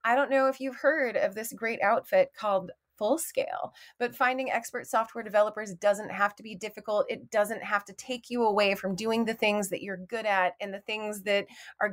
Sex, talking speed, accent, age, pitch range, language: female, 210 wpm, American, 30-49, 195-270 Hz, English